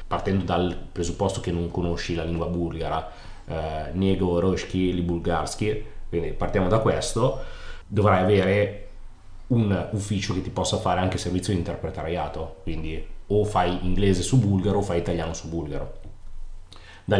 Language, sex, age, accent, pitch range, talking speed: Italian, male, 30-49, native, 85-100 Hz, 145 wpm